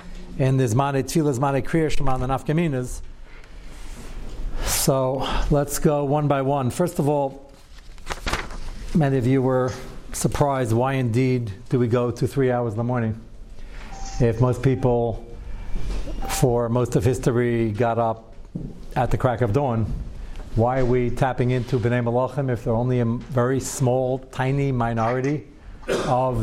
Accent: American